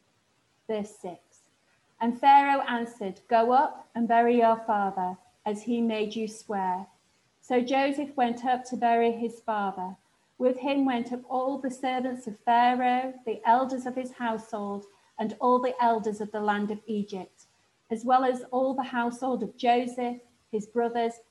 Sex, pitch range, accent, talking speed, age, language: female, 210-250 Hz, British, 160 wpm, 40-59, English